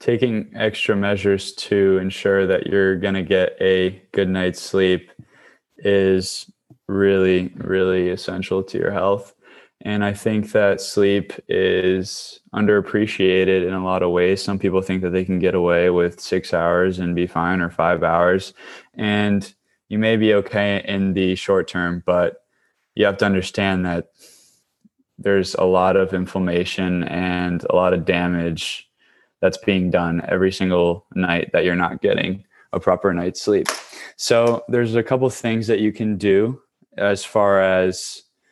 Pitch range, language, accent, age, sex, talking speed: 90-100 Hz, English, American, 20-39, male, 160 wpm